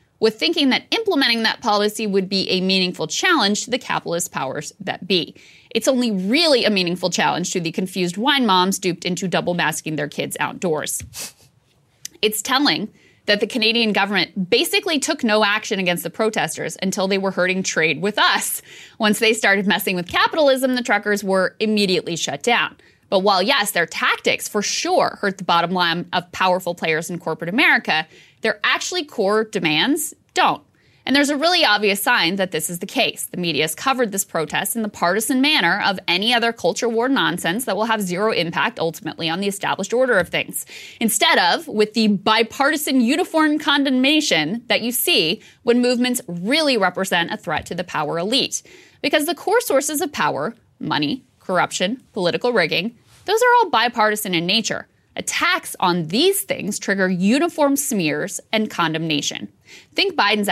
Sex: female